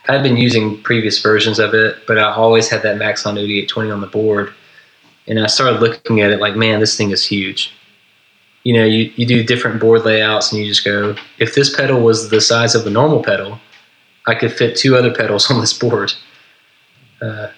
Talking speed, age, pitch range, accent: 210 wpm, 20-39, 110-120 Hz, American